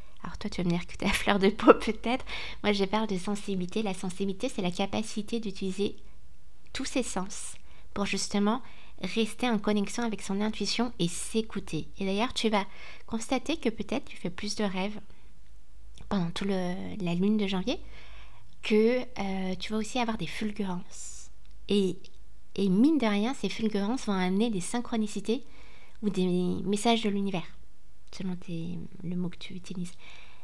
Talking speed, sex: 170 wpm, female